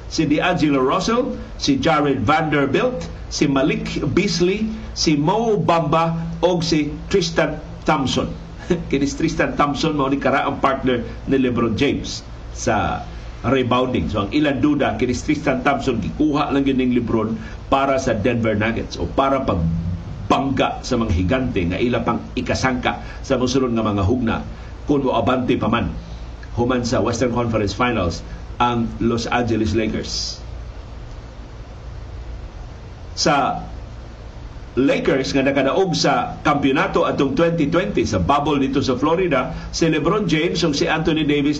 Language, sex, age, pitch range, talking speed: Filipino, male, 50-69, 115-160 Hz, 130 wpm